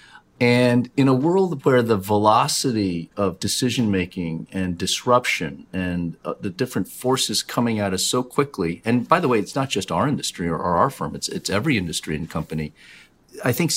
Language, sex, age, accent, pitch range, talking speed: English, male, 40-59, American, 95-125 Hz, 185 wpm